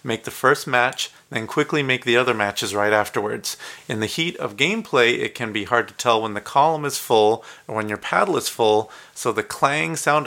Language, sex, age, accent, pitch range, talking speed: English, male, 30-49, American, 110-145 Hz, 220 wpm